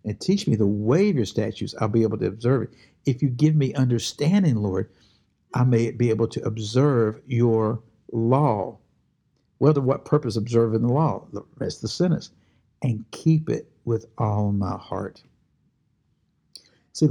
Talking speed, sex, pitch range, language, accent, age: 160 wpm, male, 110-135 Hz, English, American, 60-79